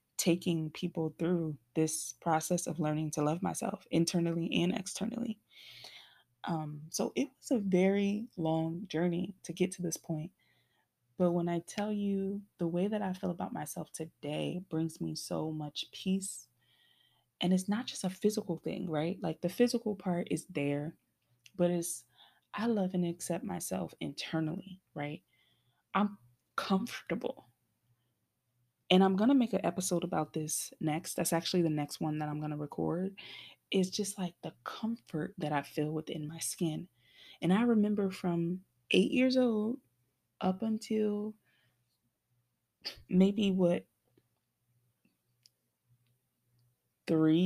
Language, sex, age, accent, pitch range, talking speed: English, female, 20-39, American, 150-195 Hz, 140 wpm